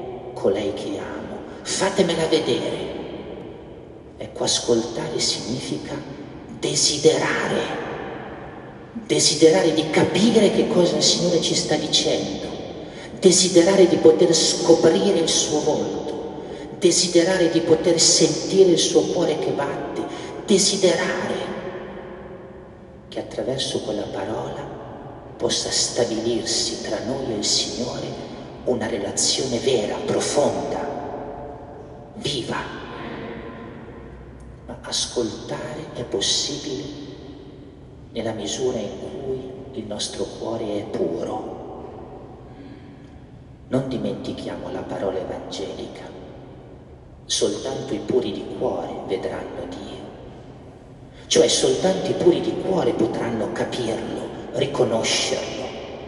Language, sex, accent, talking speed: Italian, male, native, 90 wpm